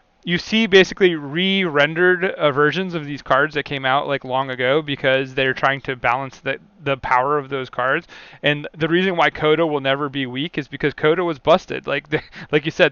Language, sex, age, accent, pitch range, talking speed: English, male, 30-49, American, 135-165 Hz, 210 wpm